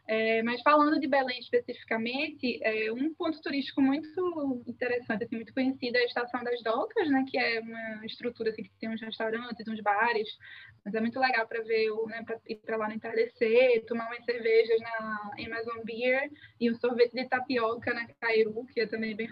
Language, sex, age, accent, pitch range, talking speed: Portuguese, female, 10-29, Brazilian, 225-260 Hz, 195 wpm